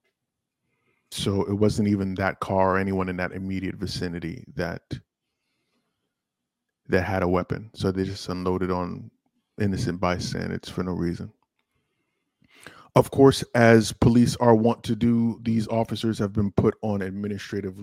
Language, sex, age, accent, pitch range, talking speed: English, male, 20-39, American, 95-110 Hz, 140 wpm